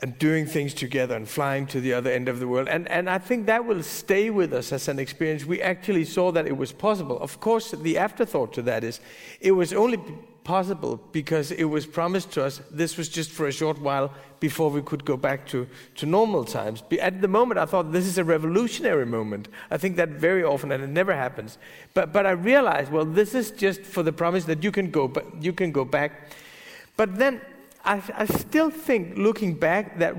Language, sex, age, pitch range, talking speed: Danish, male, 50-69, 150-190 Hz, 225 wpm